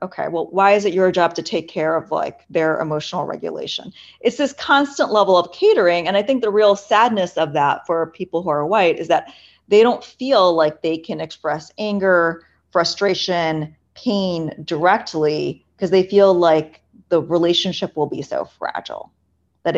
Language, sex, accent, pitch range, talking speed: English, female, American, 165-210 Hz, 175 wpm